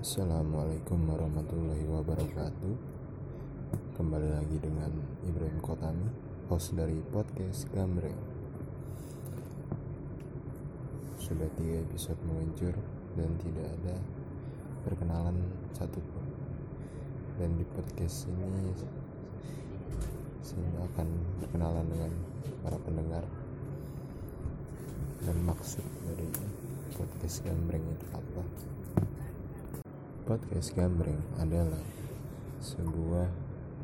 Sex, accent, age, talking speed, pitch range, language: male, native, 20-39, 75 wpm, 85-115 Hz, Indonesian